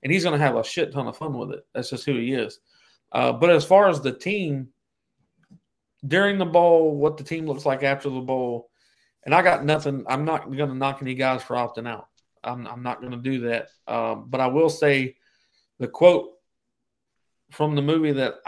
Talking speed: 220 wpm